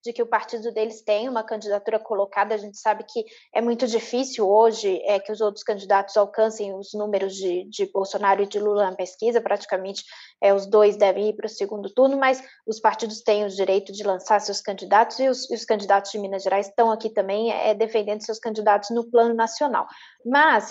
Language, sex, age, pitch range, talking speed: Portuguese, female, 20-39, 205-255 Hz, 195 wpm